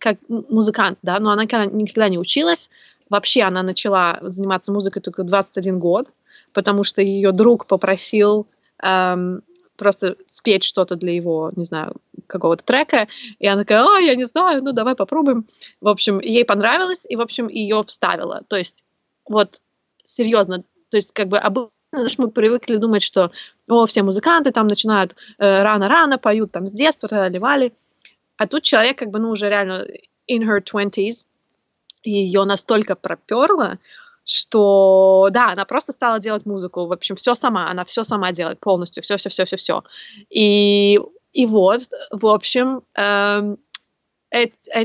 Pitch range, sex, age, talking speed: 195-245 Hz, female, 20-39, 155 wpm